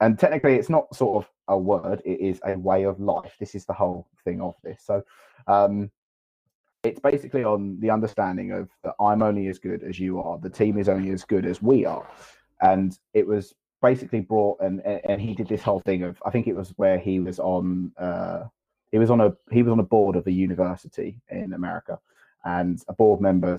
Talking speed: 220 wpm